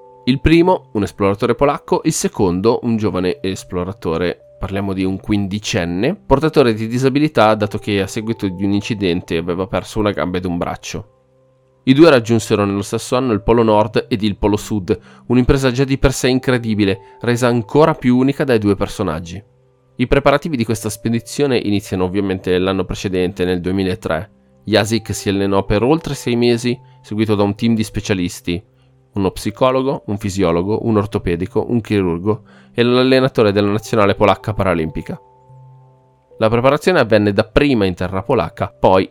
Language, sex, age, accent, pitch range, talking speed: Italian, male, 20-39, native, 95-125 Hz, 160 wpm